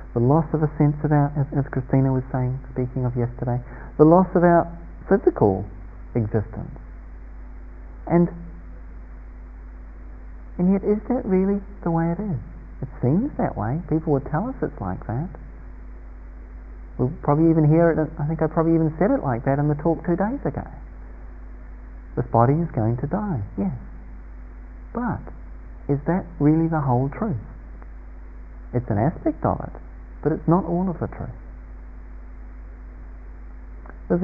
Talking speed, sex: 155 wpm, male